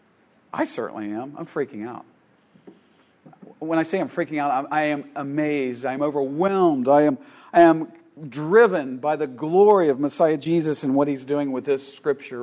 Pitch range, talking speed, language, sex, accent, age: 165-235 Hz, 165 wpm, English, male, American, 50-69